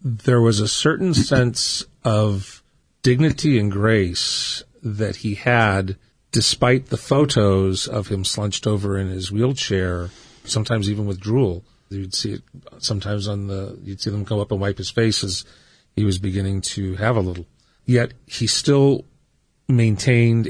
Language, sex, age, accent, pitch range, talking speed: English, male, 40-59, American, 95-115 Hz, 155 wpm